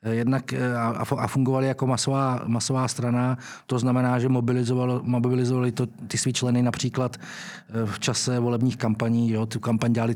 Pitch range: 120-145 Hz